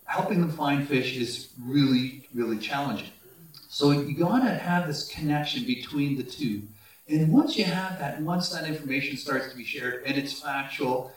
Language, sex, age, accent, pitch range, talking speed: English, male, 40-59, American, 135-175 Hz, 175 wpm